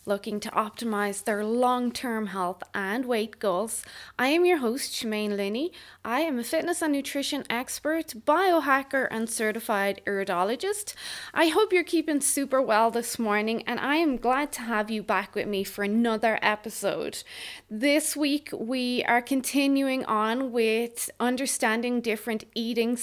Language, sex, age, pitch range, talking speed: English, female, 20-39, 210-275 Hz, 150 wpm